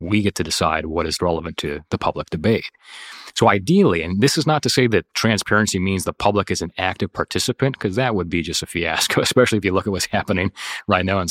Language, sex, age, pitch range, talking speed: English, male, 30-49, 85-110 Hz, 240 wpm